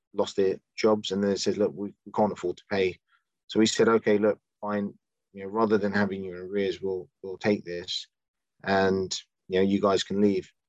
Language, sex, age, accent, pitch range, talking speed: English, male, 30-49, British, 95-105 Hz, 210 wpm